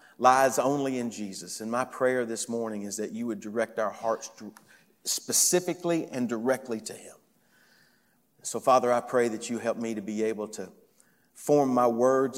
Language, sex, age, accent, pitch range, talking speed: English, male, 40-59, American, 110-135 Hz, 175 wpm